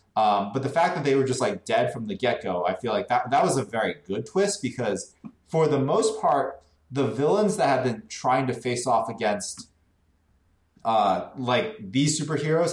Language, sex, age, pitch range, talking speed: English, male, 20-39, 105-135 Hz, 200 wpm